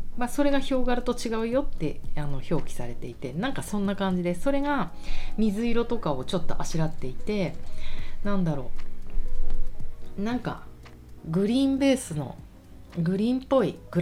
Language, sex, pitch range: Japanese, female, 135-195 Hz